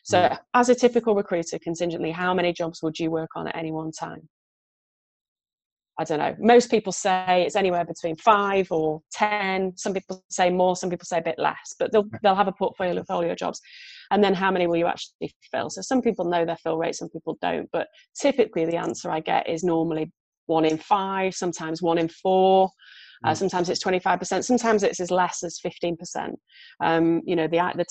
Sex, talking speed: female, 210 wpm